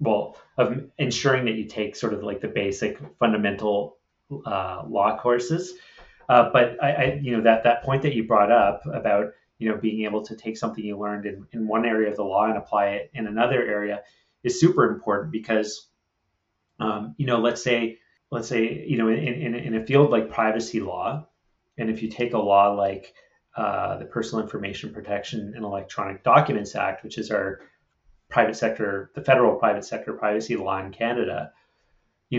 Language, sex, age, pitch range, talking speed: English, male, 30-49, 105-120 Hz, 190 wpm